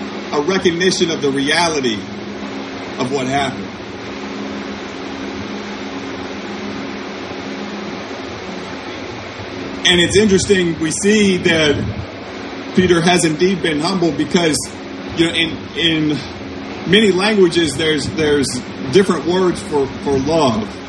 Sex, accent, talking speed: male, American, 95 wpm